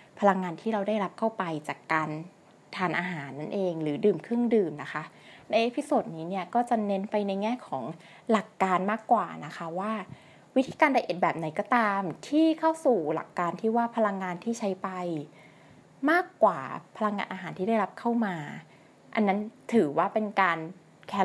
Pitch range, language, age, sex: 175-230 Hz, Thai, 20-39, female